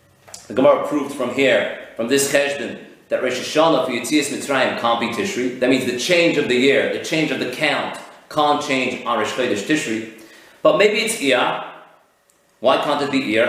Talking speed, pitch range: 190 wpm, 135-185 Hz